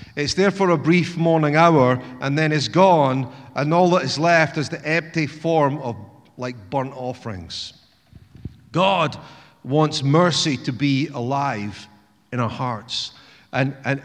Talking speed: 150 wpm